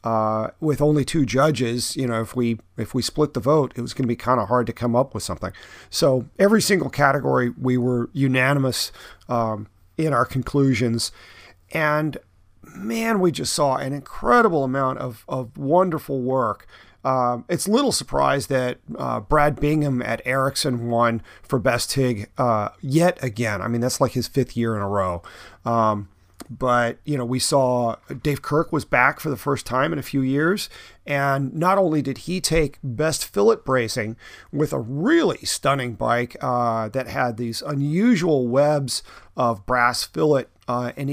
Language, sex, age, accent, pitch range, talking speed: English, male, 40-59, American, 120-150 Hz, 175 wpm